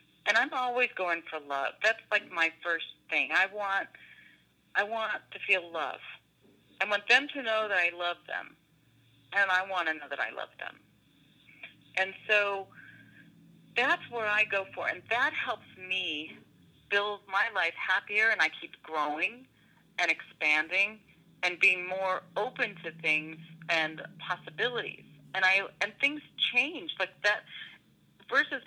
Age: 40-59